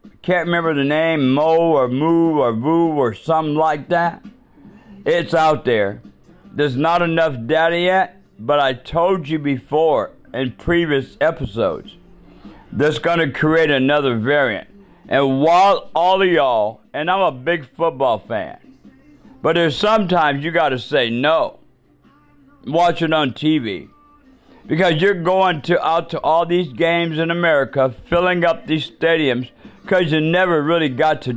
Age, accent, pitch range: 50-69, American, 145-175 Hz